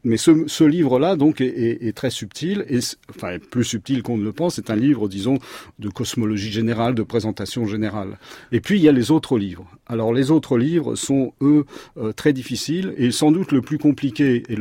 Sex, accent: male, French